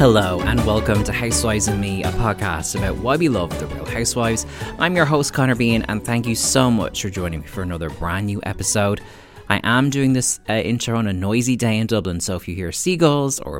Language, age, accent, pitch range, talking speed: English, 20-39, Irish, 90-115 Hz, 230 wpm